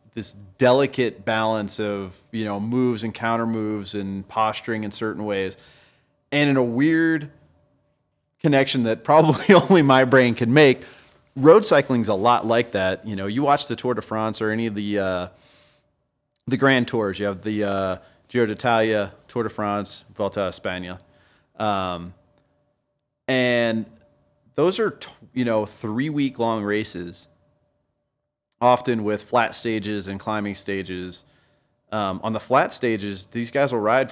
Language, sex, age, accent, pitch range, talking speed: English, male, 30-49, American, 100-130 Hz, 155 wpm